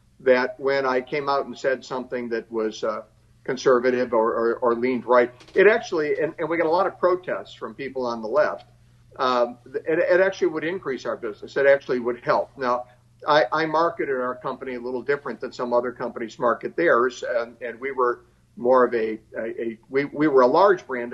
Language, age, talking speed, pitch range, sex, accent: English, 50-69, 210 wpm, 120-155 Hz, male, American